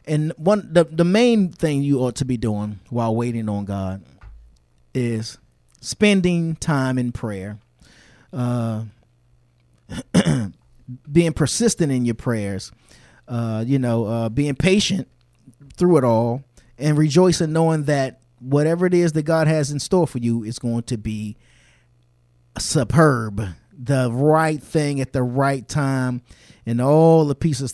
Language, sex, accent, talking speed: English, male, American, 140 wpm